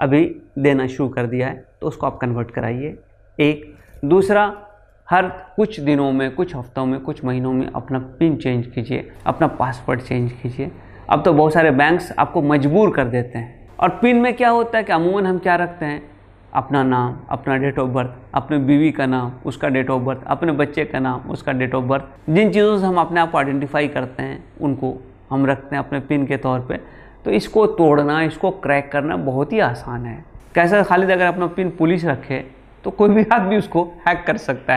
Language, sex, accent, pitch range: Hindi, male, native, 130-180 Hz